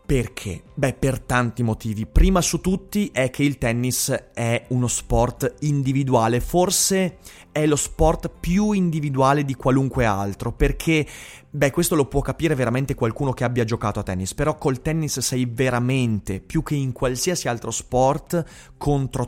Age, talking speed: 30-49, 155 wpm